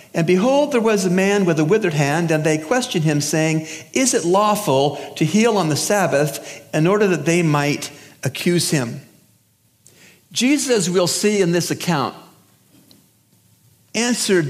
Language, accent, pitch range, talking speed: English, American, 135-200 Hz, 155 wpm